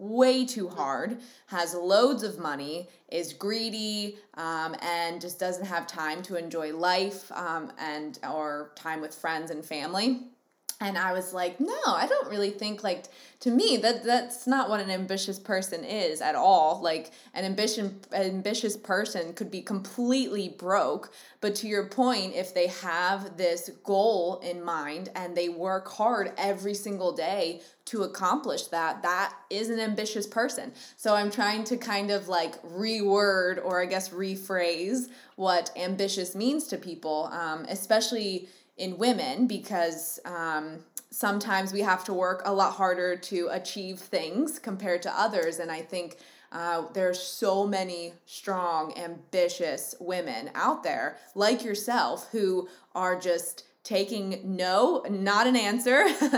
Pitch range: 175-210 Hz